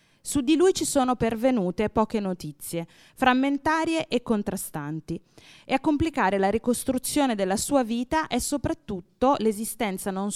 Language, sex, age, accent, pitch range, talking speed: Italian, female, 20-39, native, 185-265 Hz, 135 wpm